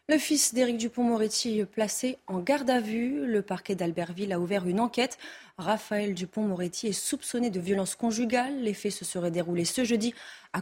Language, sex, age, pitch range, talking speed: French, female, 20-39, 190-245 Hz, 190 wpm